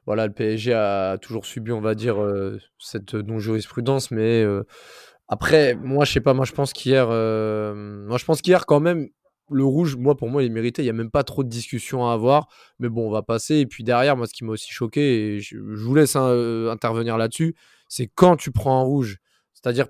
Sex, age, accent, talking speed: male, 20-39, French, 240 wpm